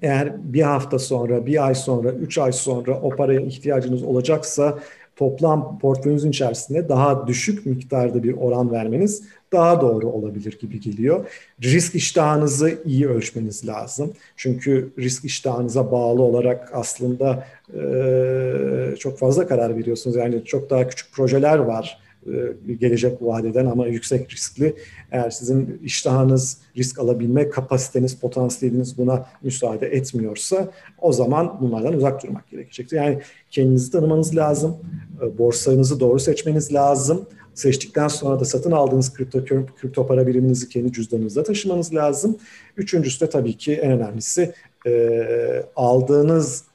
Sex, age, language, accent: male, 50-69, Turkish, native